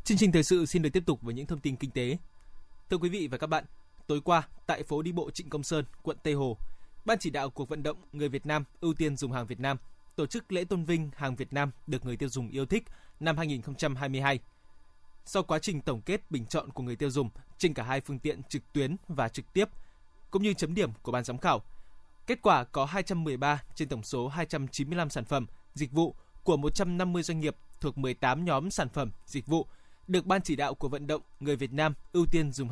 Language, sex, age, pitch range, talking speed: Vietnamese, male, 20-39, 130-170 Hz, 235 wpm